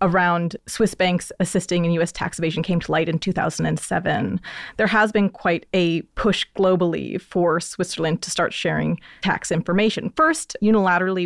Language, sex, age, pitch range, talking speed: English, female, 30-49, 180-230 Hz, 155 wpm